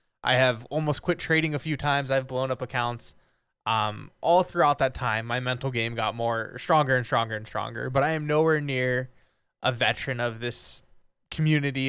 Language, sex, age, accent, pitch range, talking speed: English, male, 20-39, American, 120-155 Hz, 185 wpm